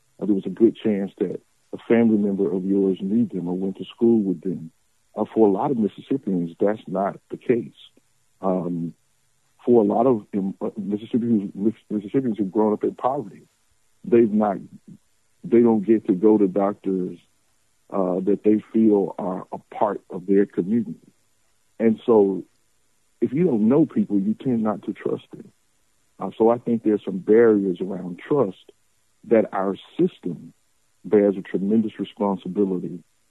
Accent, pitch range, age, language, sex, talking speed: American, 100-110 Hz, 50-69, English, male, 165 wpm